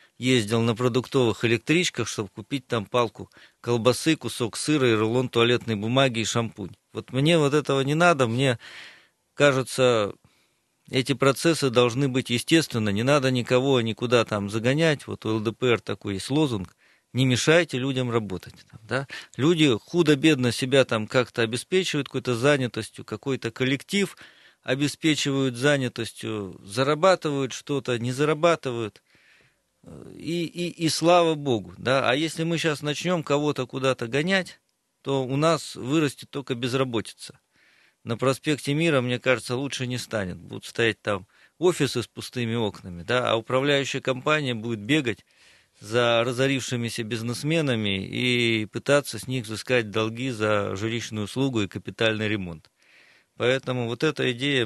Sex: male